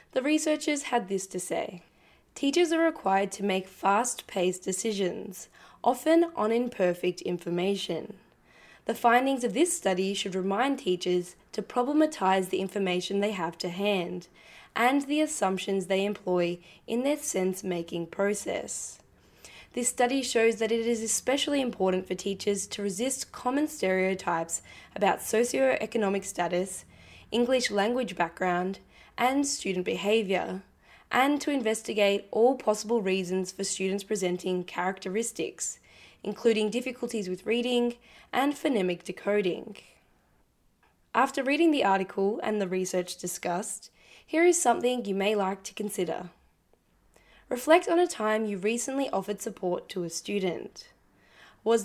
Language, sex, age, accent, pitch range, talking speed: English, female, 10-29, Australian, 185-240 Hz, 130 wpm